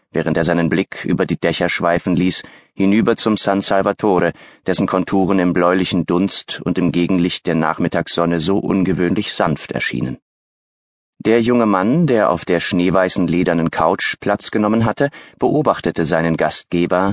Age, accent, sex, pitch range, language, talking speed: 30-49, German, male, 85-110 Hz, German, 145 wpm